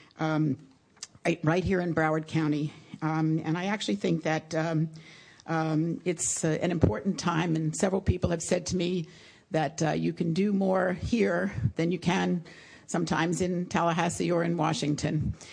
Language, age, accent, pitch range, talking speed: English, 50-69, American, 155-185 Hz, 160 wpm